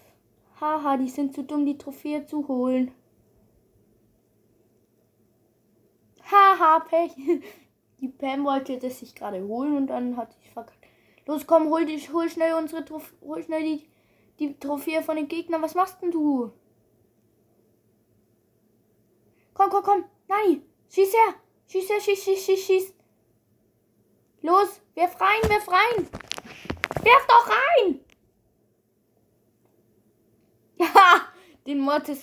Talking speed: 125 wpm